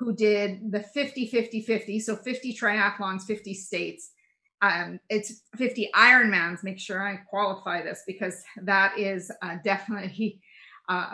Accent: American